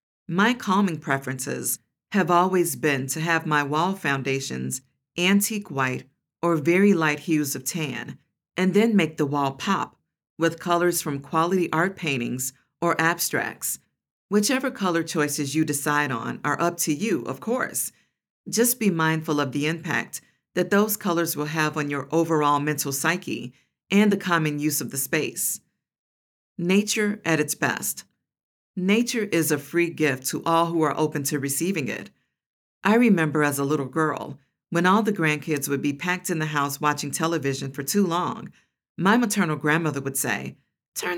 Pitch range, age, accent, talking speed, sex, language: 145-185 Hz, 50-69, American, 165 wpm, female, English